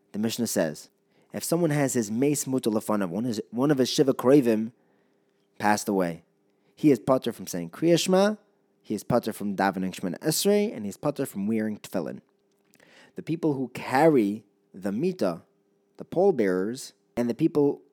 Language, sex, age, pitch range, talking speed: English, male, 30-49, 100-145 Hz, 165 wpm